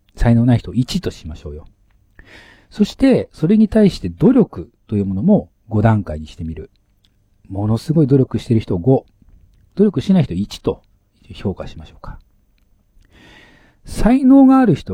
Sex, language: male, Japanese